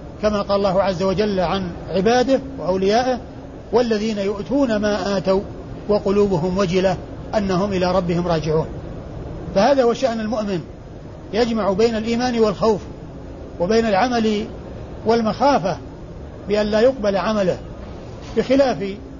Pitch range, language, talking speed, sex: 190-235 Hz, Arabic, 105 wpm, male